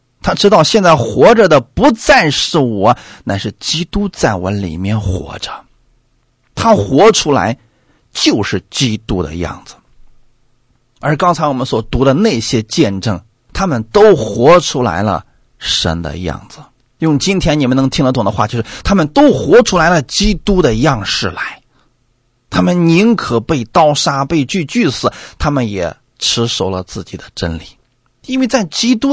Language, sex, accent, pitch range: Chinese, male, native, 115-155 Hz